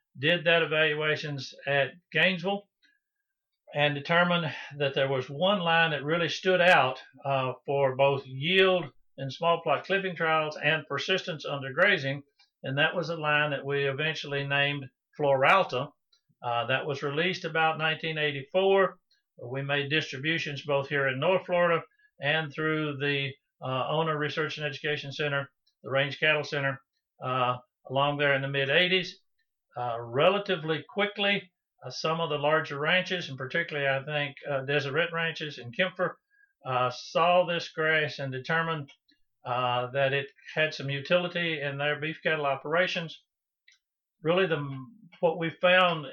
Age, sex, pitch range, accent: 60-79, male, 140-175 Hz, American